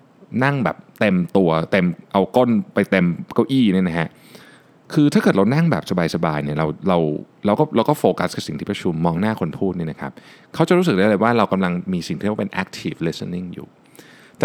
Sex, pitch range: male, 90-125 Hz